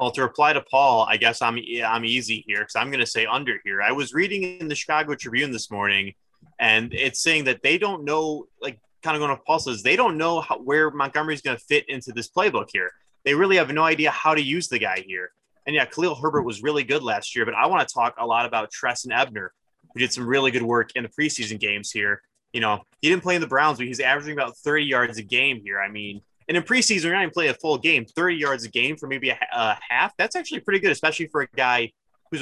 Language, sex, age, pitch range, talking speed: English, male, 20-39, 115-150 Hz, 265 wpm